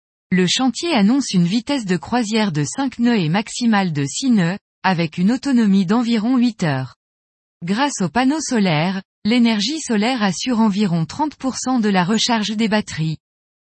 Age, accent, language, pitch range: 20-39, French, French, 175-245 Hz